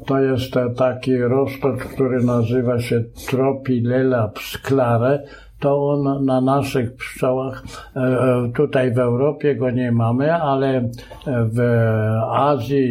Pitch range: 130-150 Hz